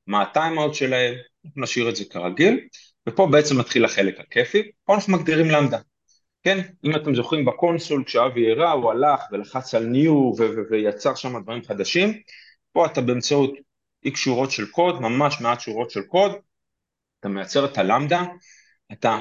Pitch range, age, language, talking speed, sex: 100-155 Hz, 30-49, Hebrew, 160 wpm, male